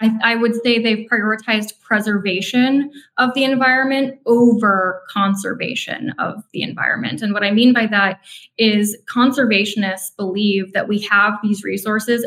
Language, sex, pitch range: English, female, 195-235 Hz